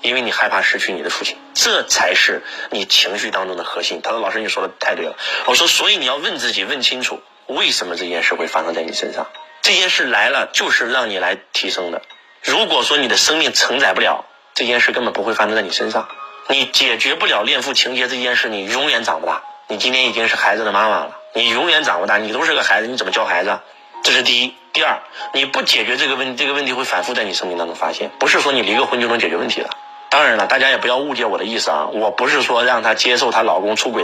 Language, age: Chinese, 30-49